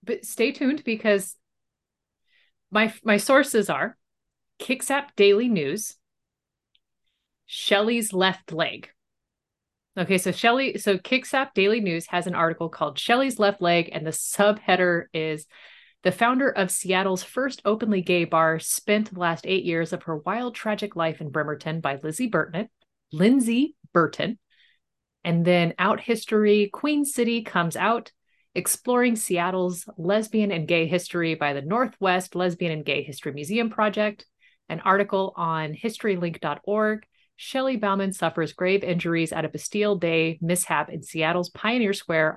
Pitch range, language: 165-220 Hz, English